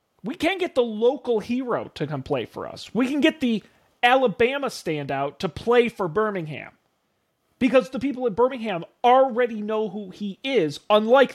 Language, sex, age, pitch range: English, male, 40-59, 160-245 Hz